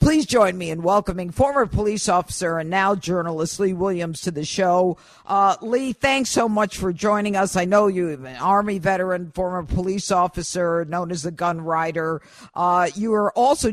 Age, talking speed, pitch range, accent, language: 50-69, 185 wpm, 155-195 Hz, American, English